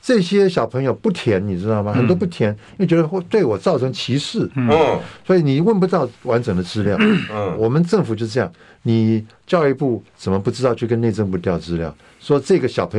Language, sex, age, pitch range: Chinese, male, 50-69, 110-160 Hz